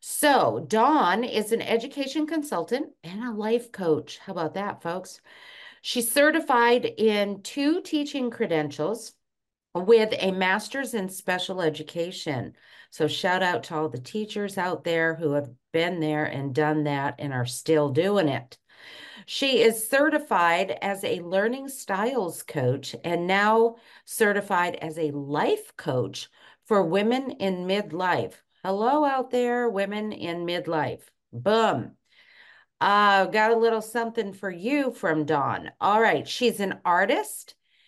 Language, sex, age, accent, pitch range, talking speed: English, female, 50-69, American, 155-230 Hz, 140 wpm